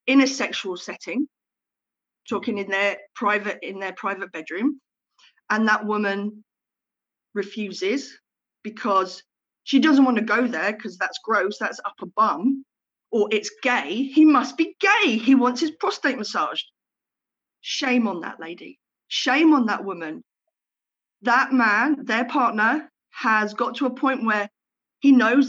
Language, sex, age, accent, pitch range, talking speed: English, female, 40-59, British, 200-255 Hz, 145 wpm